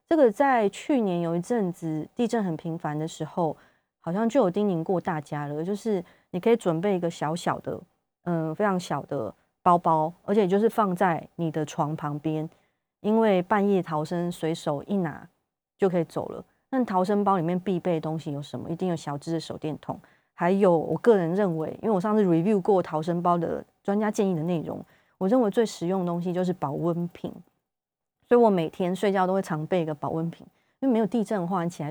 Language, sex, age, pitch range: Chinese, female, 30-49, 160-200 Hz